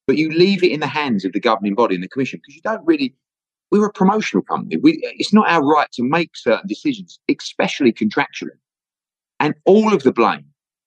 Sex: male